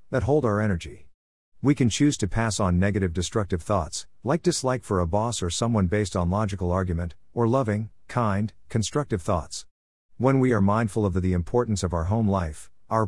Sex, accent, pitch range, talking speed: male, American, 90-115 Hz, 195 wpm